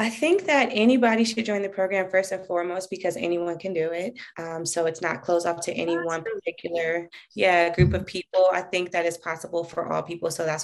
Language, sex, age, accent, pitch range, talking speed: English, female, 20-39, American, 165-185 Hz, 220 wpm